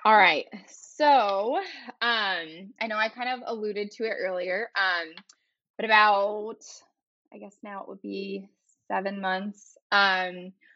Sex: female